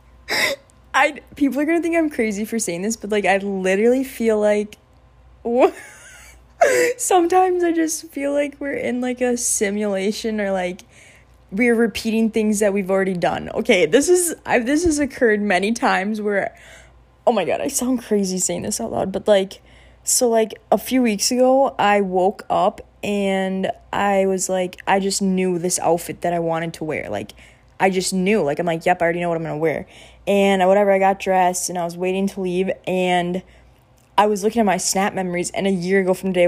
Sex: female